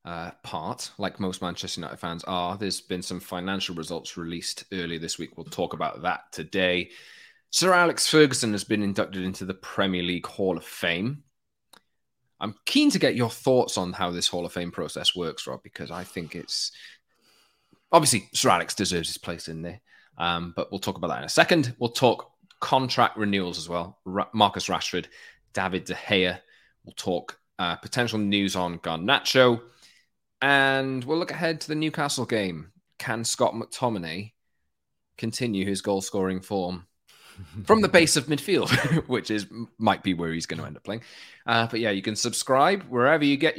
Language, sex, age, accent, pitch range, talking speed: English, male, 20-39, British, 90-130 Hz, 180 wpm